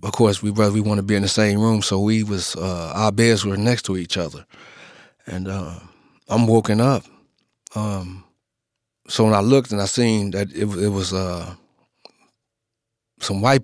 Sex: male